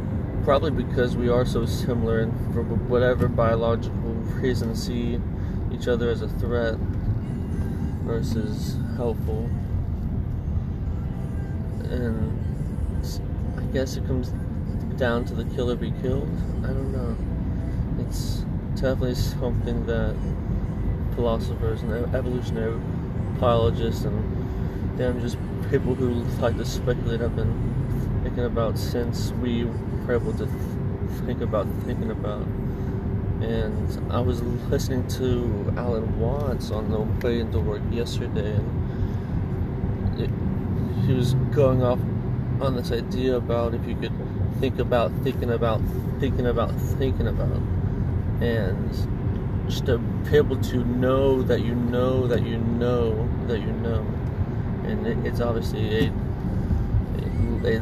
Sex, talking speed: male, 120 wpm